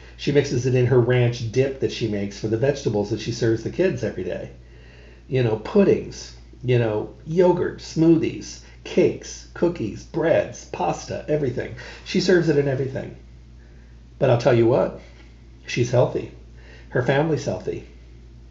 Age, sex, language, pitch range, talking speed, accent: 50-69, male, English, 110-135 Hz, 150 wpm, American